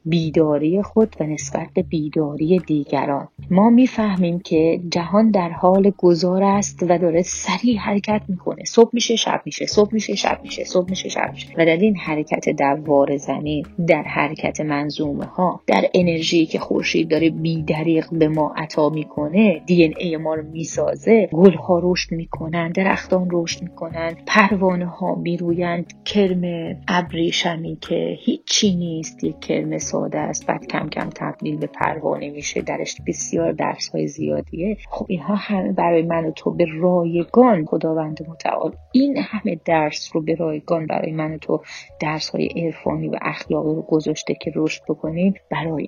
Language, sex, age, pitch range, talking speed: Persian, female, 30-49, 155-190 Hz, 155 wpm